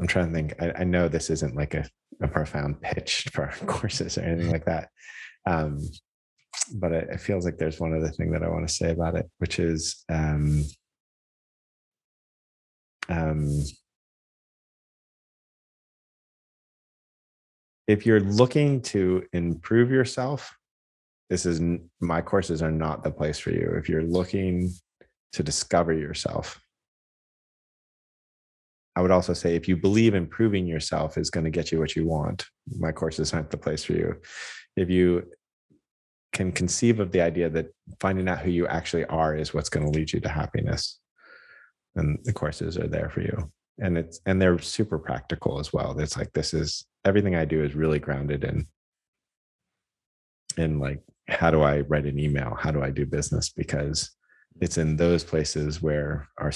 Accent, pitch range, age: American, 75-90 Hz, 30-49